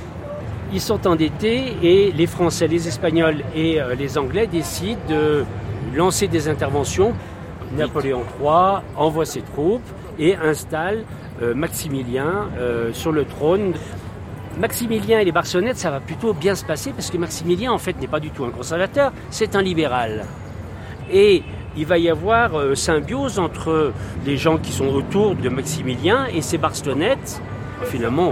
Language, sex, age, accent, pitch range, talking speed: French, male, 50-69, French, 135-175 Hz, 155 wpm